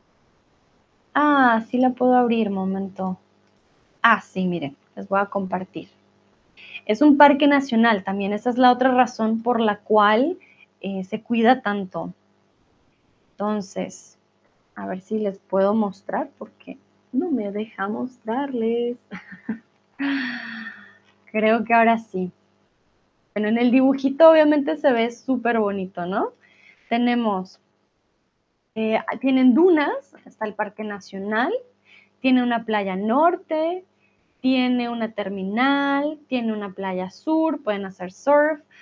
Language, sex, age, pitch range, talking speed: Spanish, female, 20-39, 200-265 Hz, 120 wpm